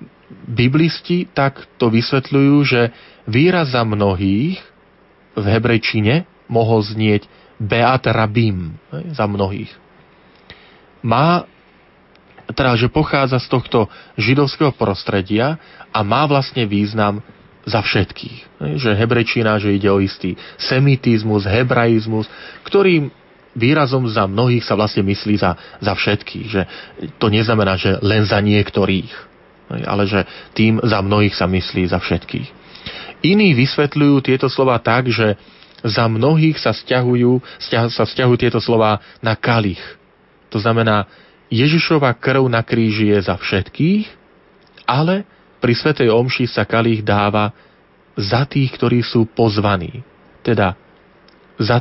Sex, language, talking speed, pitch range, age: male, Slovak, 120 wpm, 105-135 Hz, 40-59